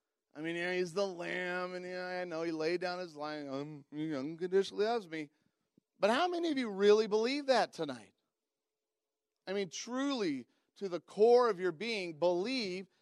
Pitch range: 160-240 Hz